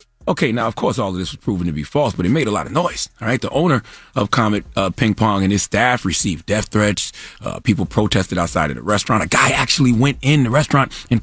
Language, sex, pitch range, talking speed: English, male, 120-190 Hz, 260 wpm